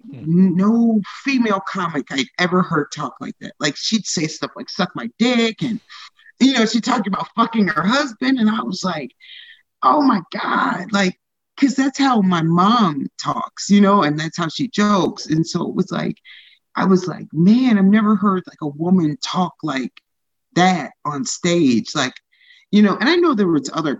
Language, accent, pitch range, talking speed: English, American, 155-230 Hz, 190 wpm